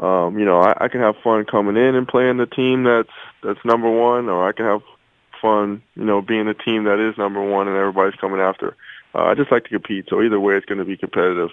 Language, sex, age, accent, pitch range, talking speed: English, male, 20-39, American, 95-110 Hz, 260 wpm